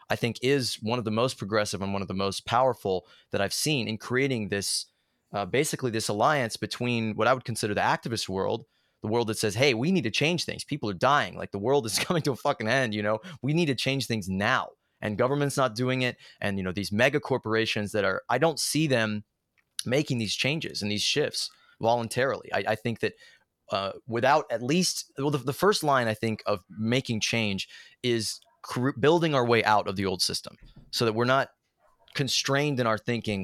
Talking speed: 215 wpm